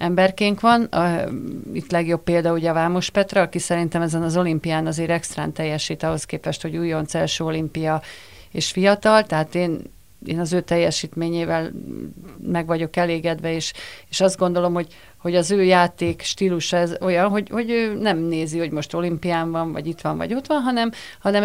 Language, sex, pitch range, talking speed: Hungarian, female, 165-185 Hz, 175 wpm